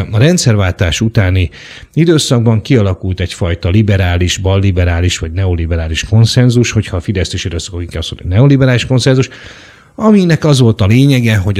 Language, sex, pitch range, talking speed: Hungarian, male, 90-115 Hz, 135 wpm